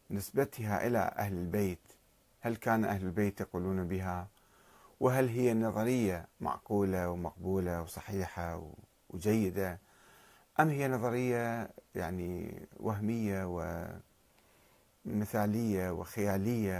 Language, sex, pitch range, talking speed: Arabic, male, 95-115 Hz, 85 wpm